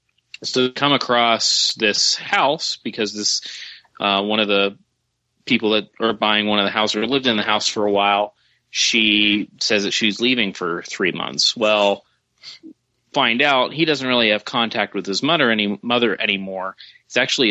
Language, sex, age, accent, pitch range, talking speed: English, male, 30-49, American, 100-125 Hz, 170 wpm